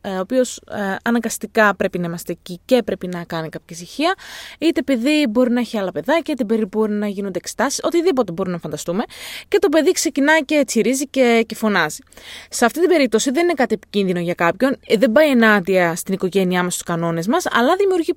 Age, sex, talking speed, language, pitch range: 20-39, female, 200 wpm, Greek, 195-290 Hz